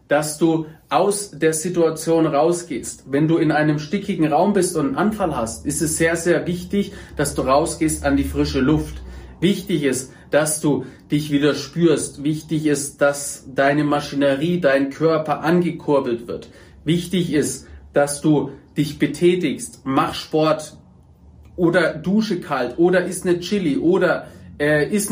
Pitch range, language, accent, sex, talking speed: 140-180 Hz, German, German, male, 150 wpm